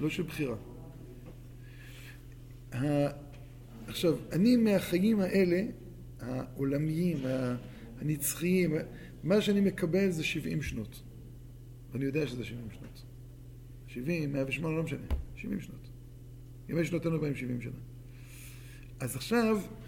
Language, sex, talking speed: Hebrew, male, 95 wpm